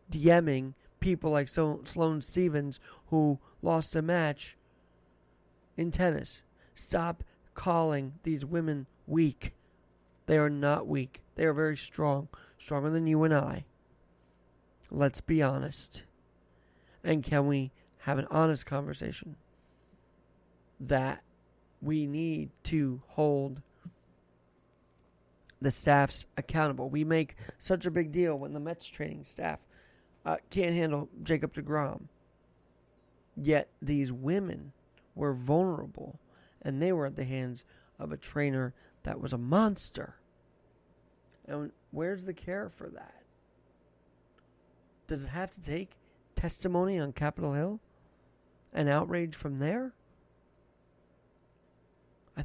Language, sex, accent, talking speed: English, male, American, 115 wpm